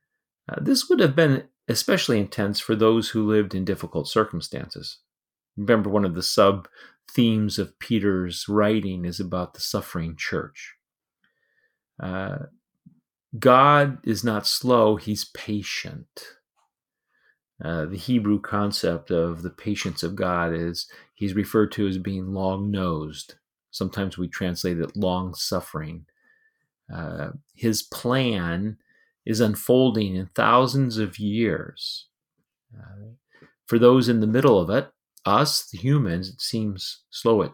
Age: 40-59